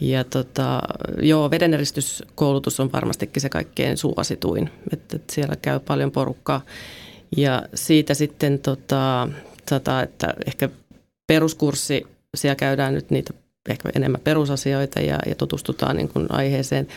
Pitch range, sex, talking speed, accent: 135-155 Hz, female, 115 wpm, native